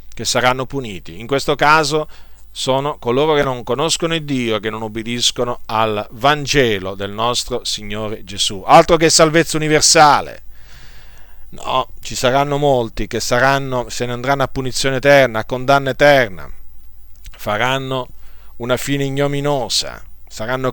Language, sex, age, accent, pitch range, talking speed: Italian, male, 50-69, native, 110-140 Hz, 135 wpm